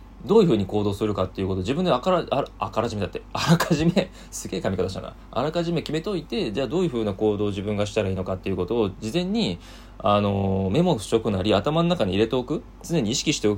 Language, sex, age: Japanese, male, 20-39